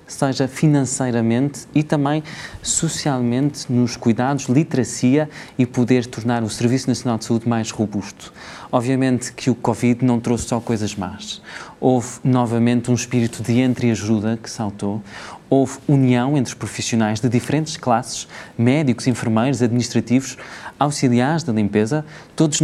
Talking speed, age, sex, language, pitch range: 135 wpm, 20-39, male, Portuguese, 115-140 Hz